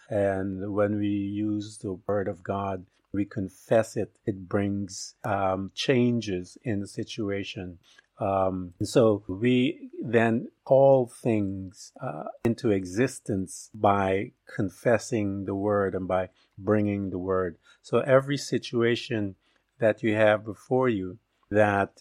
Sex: male